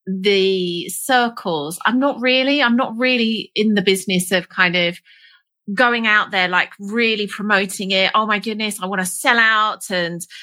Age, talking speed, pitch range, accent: 30-49, 175 wpm, 190-240 Hz, British